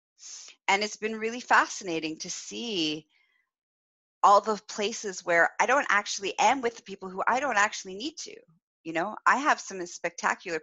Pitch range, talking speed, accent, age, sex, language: 155-205 Hz, 170 wpm, American, 30-49, female, English